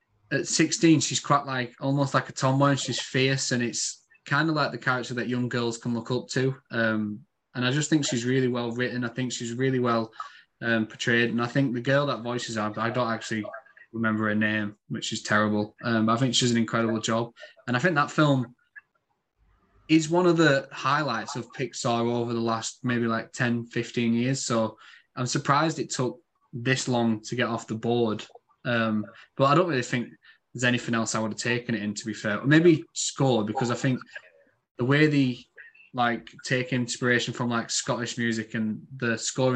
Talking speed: 200 wpm